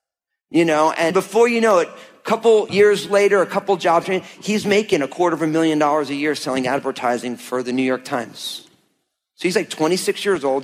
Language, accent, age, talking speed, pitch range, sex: English, American, 40-59, 210 wpm, 135-205 Hz, male